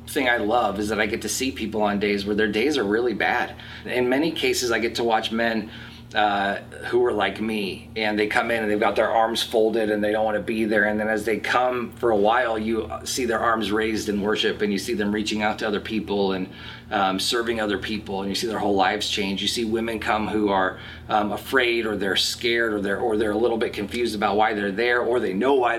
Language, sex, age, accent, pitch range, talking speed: English, male, 30-49, American, 105-115 Hz, 260 wpm